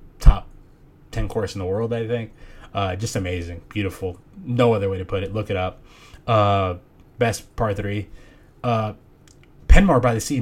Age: 20-39